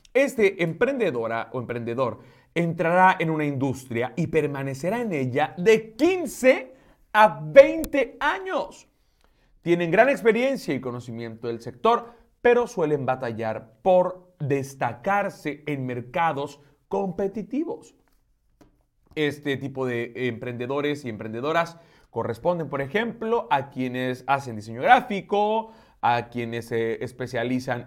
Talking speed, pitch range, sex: 110 wpm, 120-200 Hz, male